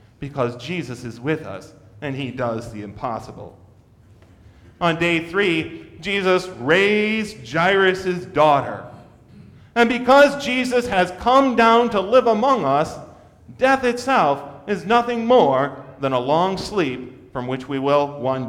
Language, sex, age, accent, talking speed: English, male, 40-59, American, 135 wpm